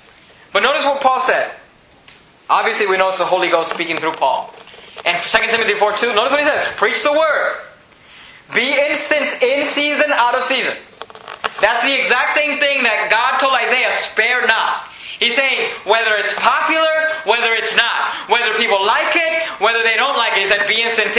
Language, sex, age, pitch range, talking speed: English, male, 20-39, 215-290 Hz, 185 wpm